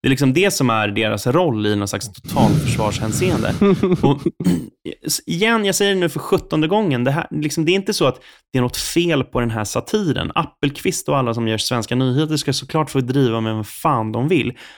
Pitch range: 110-155 Hz